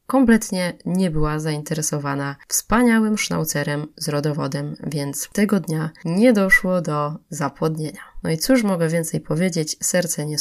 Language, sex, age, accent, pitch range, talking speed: Polish, female, 20-39, native, 155-190 Hz, 135 wpm